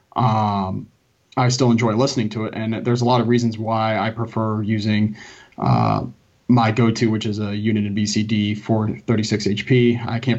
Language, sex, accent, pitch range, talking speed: English, male, American, 110-120 Hz, 175 wpm